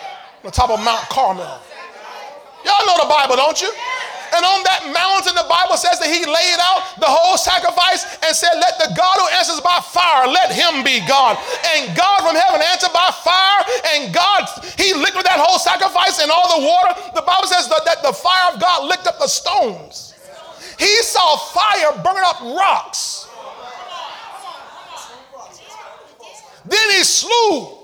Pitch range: 295-370 Hz